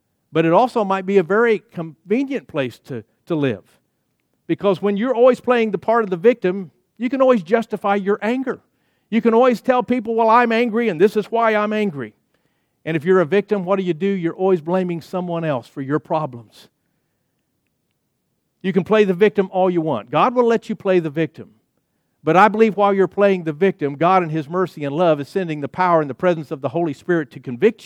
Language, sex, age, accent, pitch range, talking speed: English, male, 50-69, American, 155-210 Hz, 220 wpm